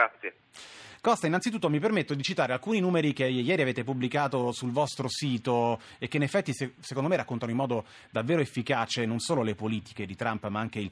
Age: 30-49